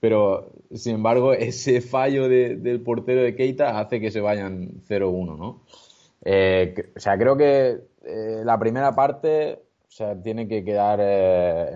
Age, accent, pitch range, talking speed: 20-39, Spanish, 90-120 Hz, 160 wpm